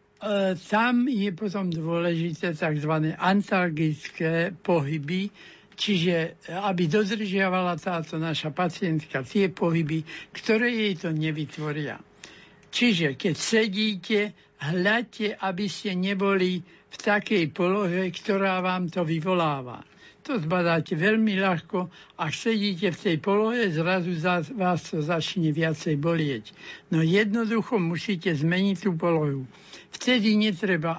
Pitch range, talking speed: 160-195 Hz, 110 wpm